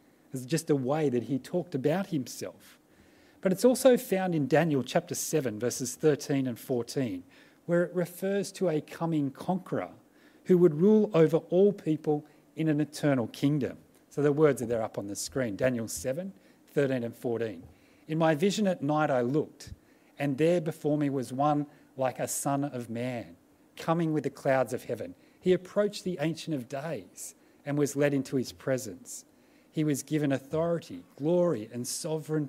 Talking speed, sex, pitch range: 175 wpm, male, 135-185 Hz